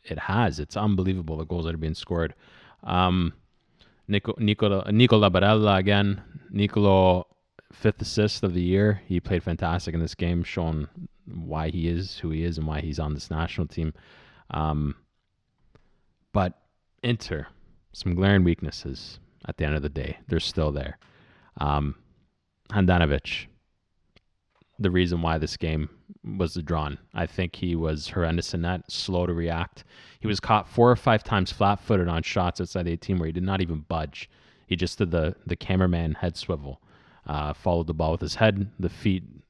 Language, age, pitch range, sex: English, 30-49, 80-100 Hz, male